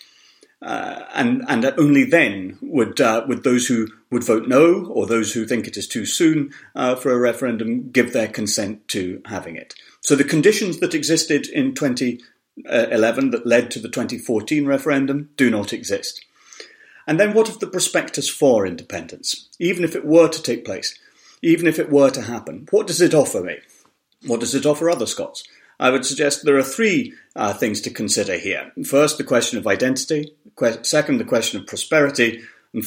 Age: 40-59